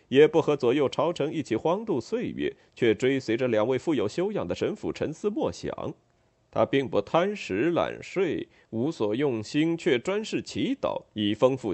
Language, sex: Chinese, male